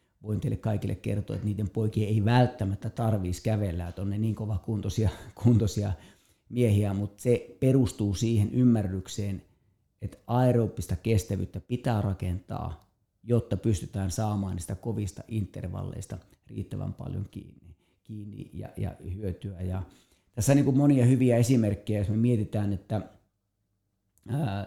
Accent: native